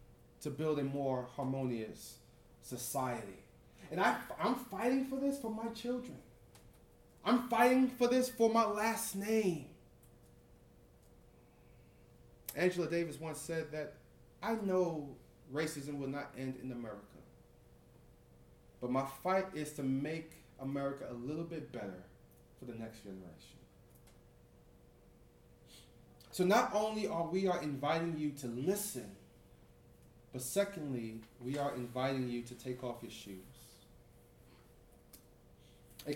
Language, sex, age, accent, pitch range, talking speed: English, male, 30-49, American, 125-180 Hz, 120 wpm